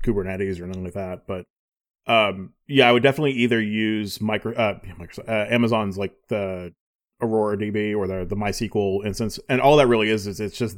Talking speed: 190 wpm